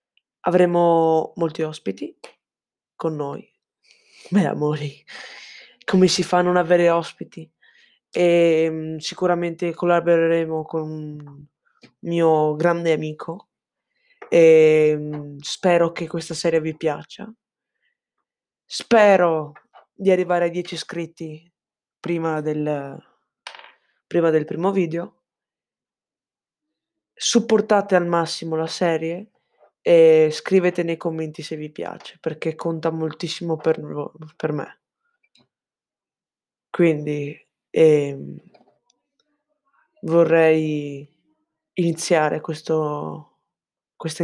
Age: 20-39